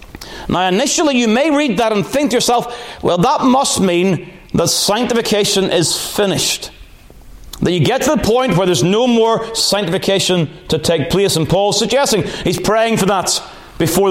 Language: English